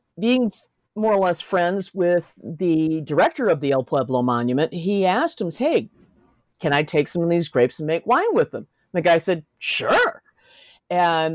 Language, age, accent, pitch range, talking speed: English, 50-69, American, 140-175 Hz, 185 wpm